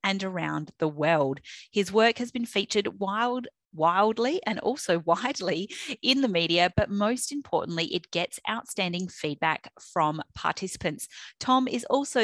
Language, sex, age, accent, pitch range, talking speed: English, female, 30-49, Australian, 160-210 Hz, 140 wpm